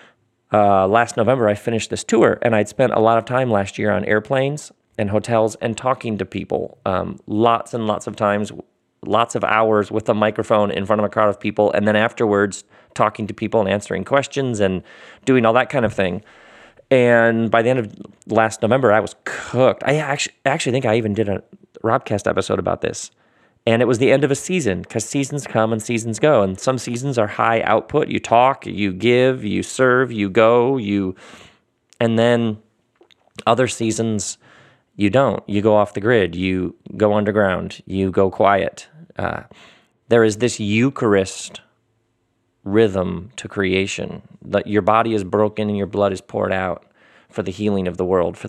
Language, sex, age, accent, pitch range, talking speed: English, male, 30-49, American, 100-120 Hz, 190 wpm